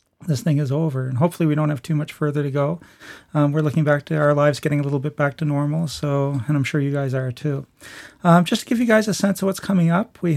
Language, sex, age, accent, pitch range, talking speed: English, male, 40-59, American, 145-170 Hz, 285 wpm